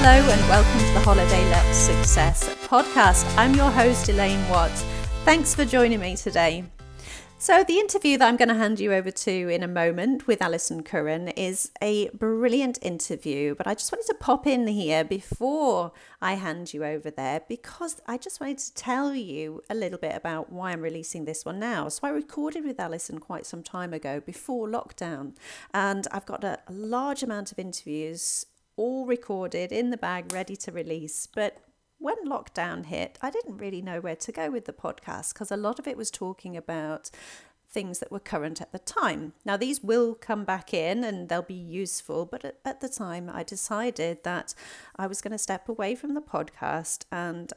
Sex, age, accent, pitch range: female, 40-59, British, 165-235 Hz